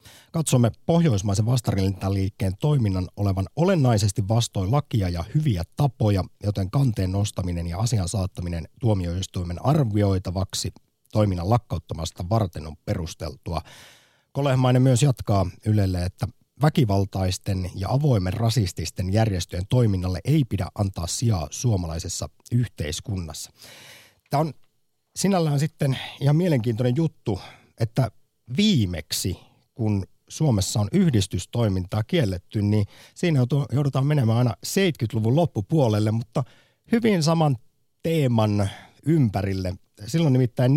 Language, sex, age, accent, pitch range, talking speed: Finnish, male, 50-69, native, 95-135 Hz, 100 wpm